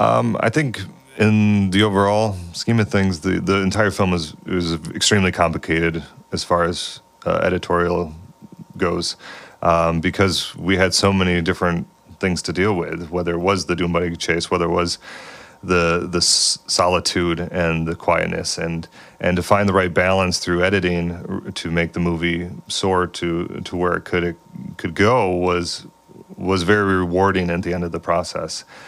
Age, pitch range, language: 30-49, 85-100 Hz, English